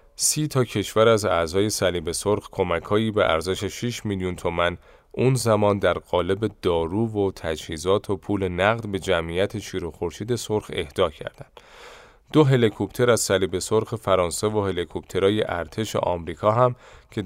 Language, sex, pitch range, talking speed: Persian, male, 90-110 Hz, 150 wpm